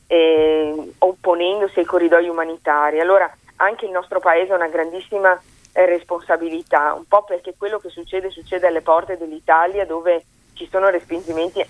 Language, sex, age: Italian, female, 30-49